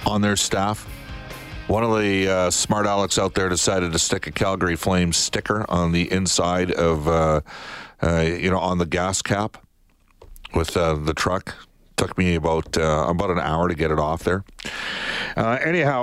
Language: English